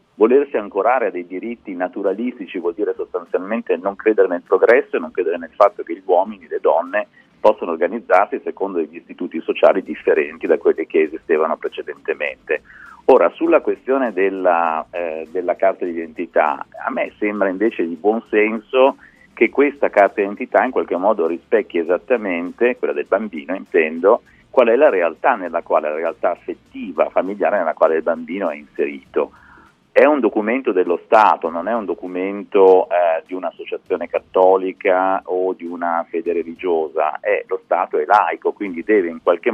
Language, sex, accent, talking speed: Italian, male, native, 160 wpm